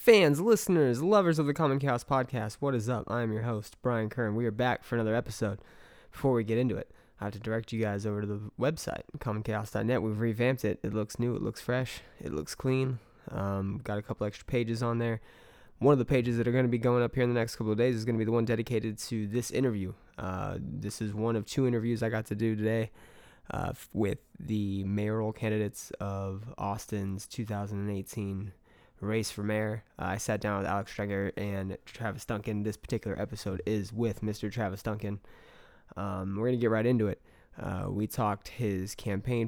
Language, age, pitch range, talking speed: English, 20-39, 100-120 Hz, 215 wpm